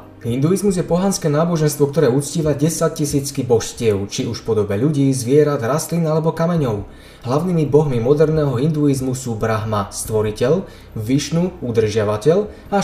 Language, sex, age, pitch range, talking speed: Slovak, male, 20-39, 115-155 Hz, 130 wpm